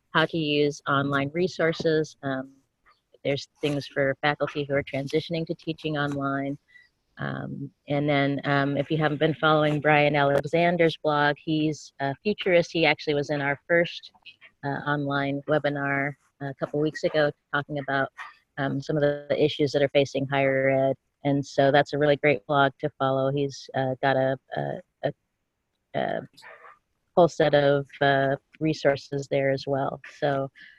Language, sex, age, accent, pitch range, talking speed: English, female, 30-49, American, 140-155 Hz, 160 wpm